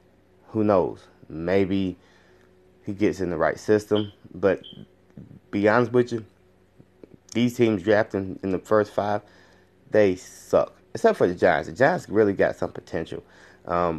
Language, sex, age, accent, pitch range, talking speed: English, male, 20-39, American, 90-105 Hz, 145 wpm